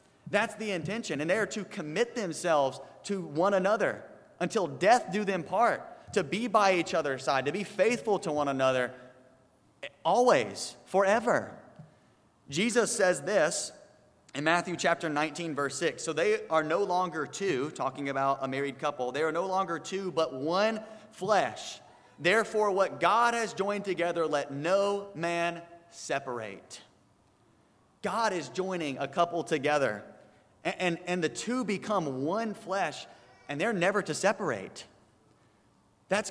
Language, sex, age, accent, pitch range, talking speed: English, male, 30-49, American, 140-190 Hz, 145 wpm